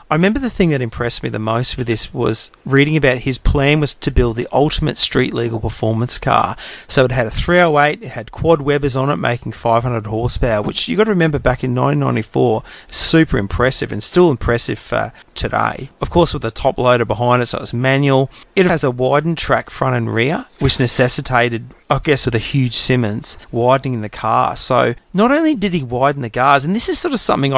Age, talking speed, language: 30-49, 215 wpm, English